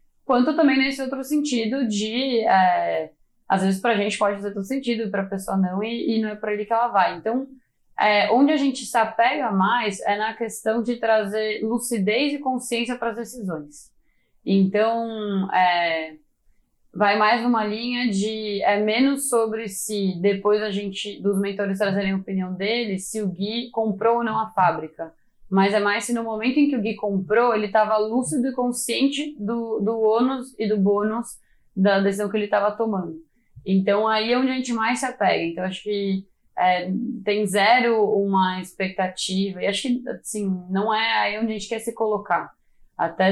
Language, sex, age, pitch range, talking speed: Portuguese, female, 20-39, 195-235 Hz, 190 wpm